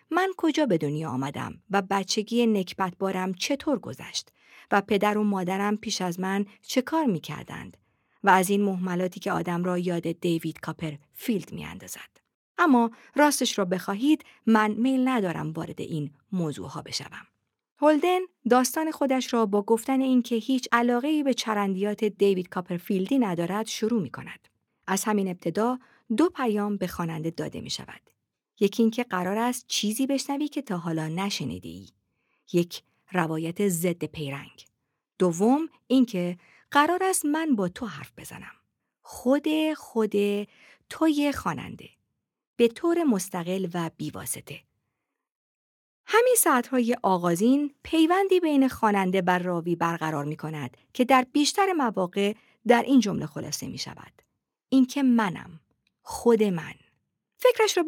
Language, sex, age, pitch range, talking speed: Persian, female, 50-69, 180-260 Hz, 140 wpm